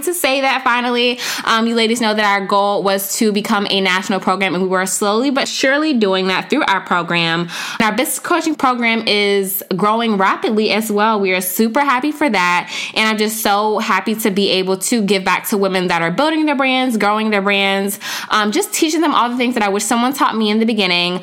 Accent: American